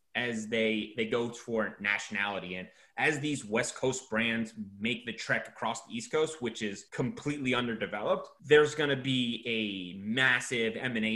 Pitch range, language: 115-155 Hz, English